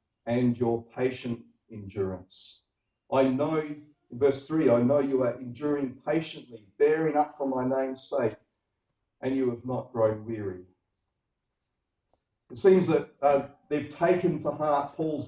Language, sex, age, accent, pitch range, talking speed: English, male, 40-59, Australian, 120-145 Hz, 140 wpm